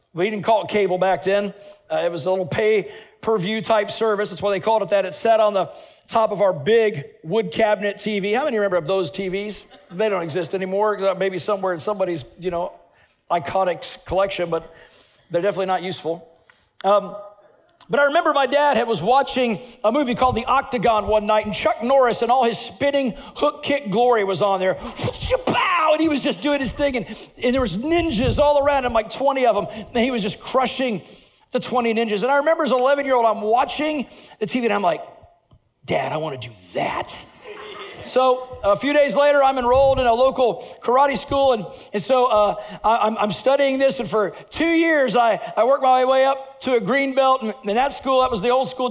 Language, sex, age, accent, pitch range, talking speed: English, male, 50-69, American, 205-260 Hz, 215 wpm